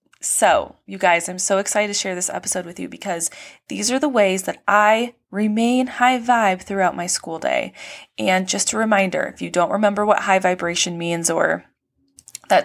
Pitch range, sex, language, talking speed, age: 175-215 Hz, female, English, 190 wpm, 20-39